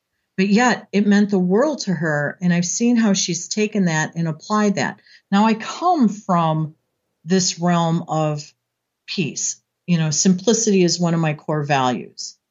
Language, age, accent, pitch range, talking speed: English, 50-69, American, 155-195 Hz, 170 wpm